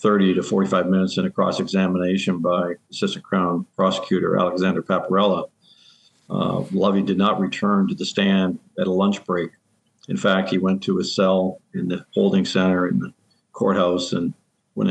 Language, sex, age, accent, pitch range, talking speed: English, male, 50-69, American, 90-100 Hz, 170 wpm